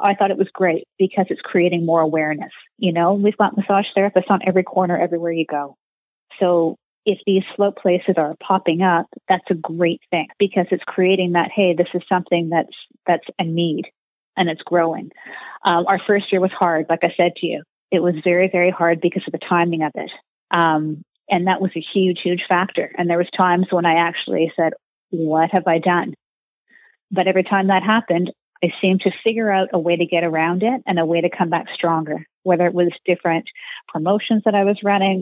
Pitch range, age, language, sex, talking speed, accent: 170-195 Hz, 30-49, English, female, 210 wpm, American